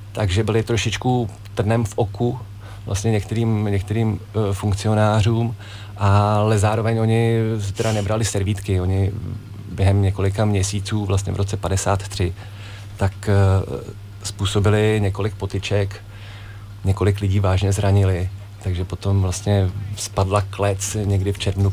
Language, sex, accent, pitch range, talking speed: Czech, male, native, 95-105 Hz, 115 wpm